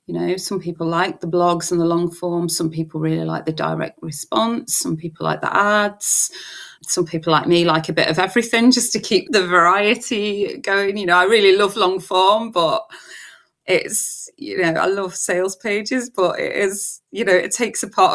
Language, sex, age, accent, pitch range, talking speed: English, female, 30-49, British, 170-250 Hz, 205 wpm